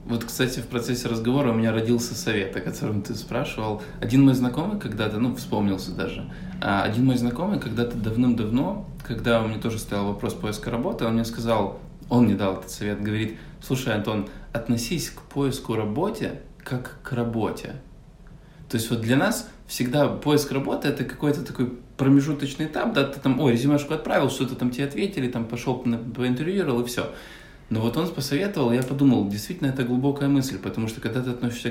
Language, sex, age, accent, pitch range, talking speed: Russian, male, 20-39, native, 110-130 Hz, 180 wpm